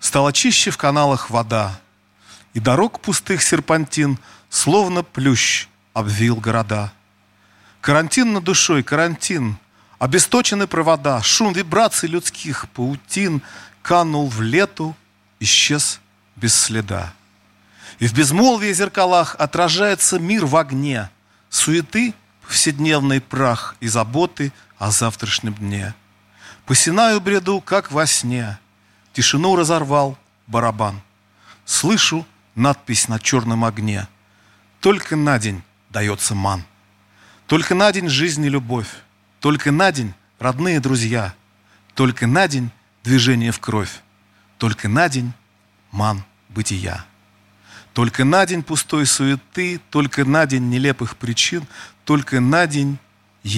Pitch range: 105-155 Hz